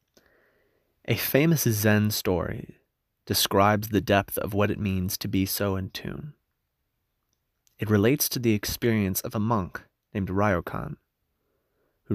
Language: English